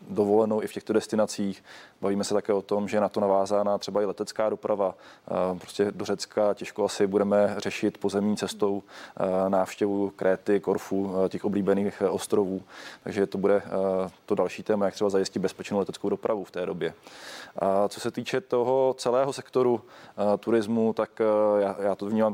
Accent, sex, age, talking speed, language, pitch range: native, male, 20-39, 165 wpm, Czech, 100-110 Hz